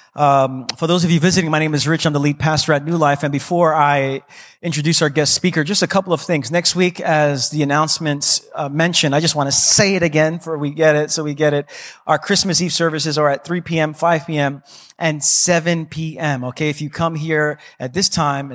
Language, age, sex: English, 30-49, male